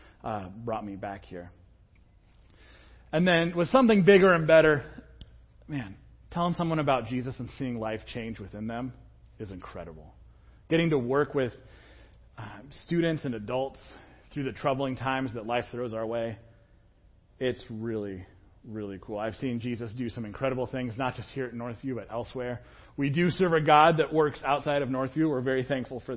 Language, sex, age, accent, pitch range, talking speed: English, male, 30-49, American, 105-145 Hz, 170 wpm